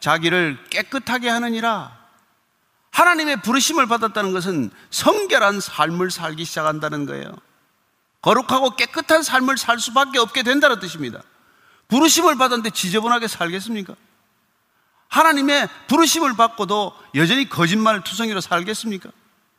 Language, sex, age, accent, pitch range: Korean, male, 40-59, native, 190-275 Hz